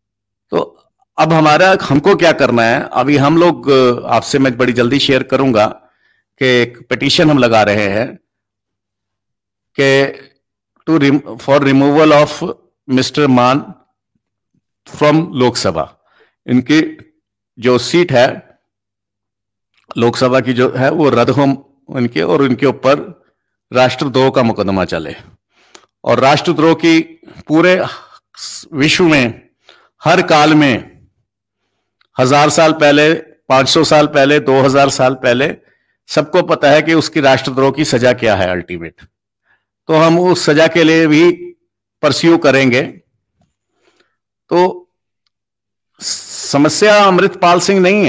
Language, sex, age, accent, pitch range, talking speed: English, male, 50-69, Indian, 120-160 Hz, 115 wpm